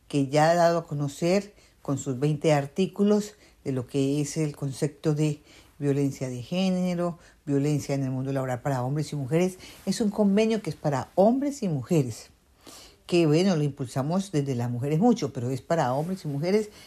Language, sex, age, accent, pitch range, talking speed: Spanish, female, 50-69, American, 140-180 Hz, 185 wpm